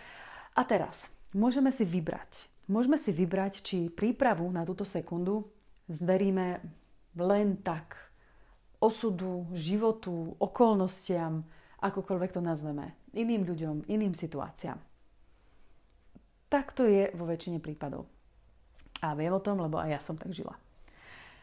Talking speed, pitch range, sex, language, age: 120 wpm, 170-220 Hz, female, Slovak, 30-49